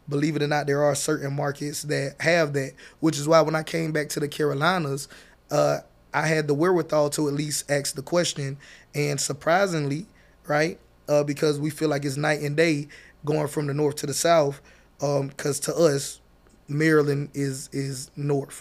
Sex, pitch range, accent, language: male, 145-160 Hz, American, English